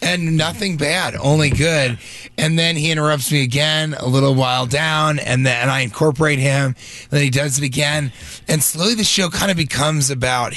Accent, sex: American, male